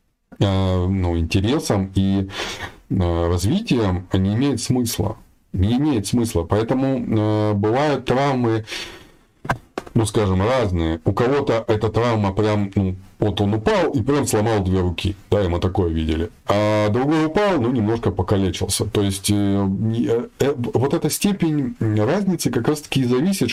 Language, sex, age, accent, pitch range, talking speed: Russian, male, 30-49, native, 95-125 Hz, 140 wpm